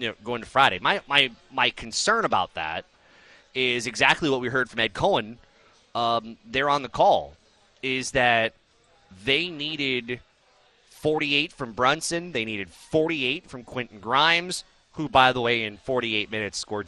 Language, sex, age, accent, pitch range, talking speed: English, male, 30-49, American, 115-145 Hz, 160 wpm